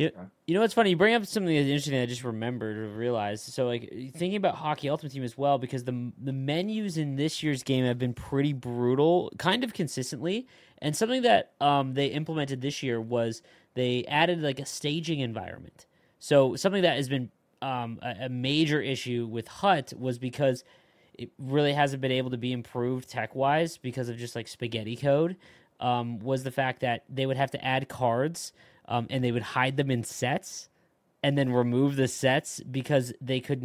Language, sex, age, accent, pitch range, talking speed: English, male, 20-39, American, 125-155 Hz, 205 wpm